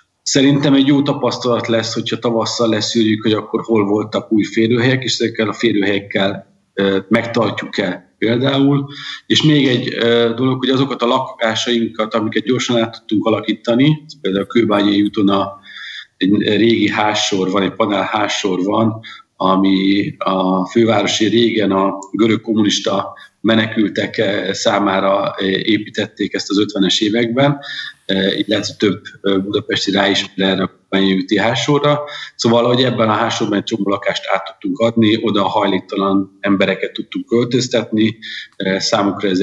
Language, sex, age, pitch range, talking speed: Hungarian, male, 50-69, 100-120 Hz, 125 wpm